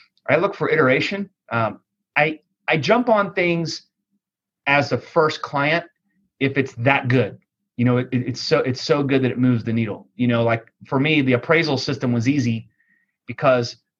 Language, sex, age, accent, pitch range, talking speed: English, male, 30-49, American, 125-155 Hz, 180 wpm